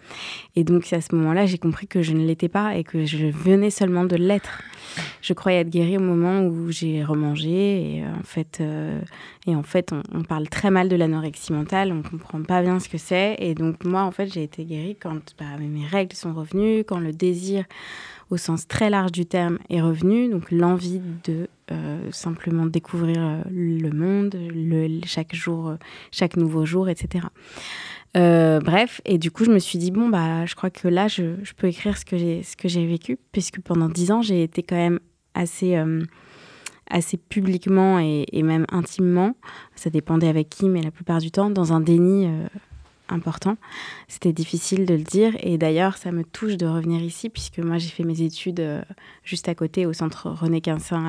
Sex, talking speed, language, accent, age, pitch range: female, 205 wpm, French, French, 20-39, 165-185 Hz